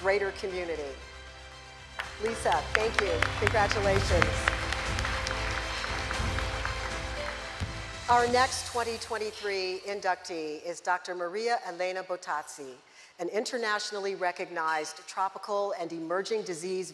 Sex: female